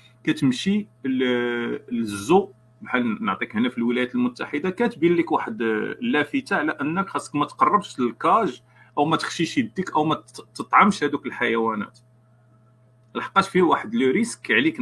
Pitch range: 120-185 Hz